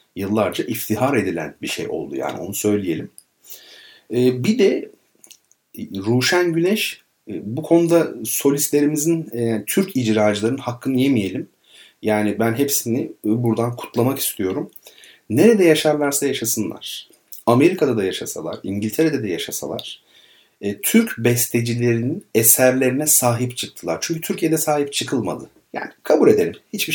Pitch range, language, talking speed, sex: 110-140 Hz, Turkish, 105 wpm, male